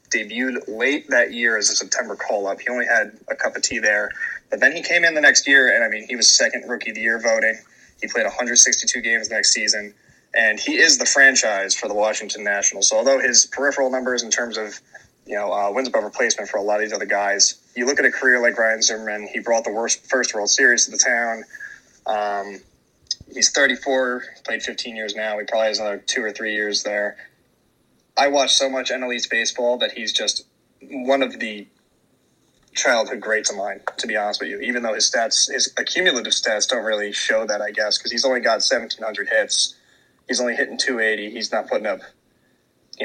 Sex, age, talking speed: male, 20-39, 215 wpm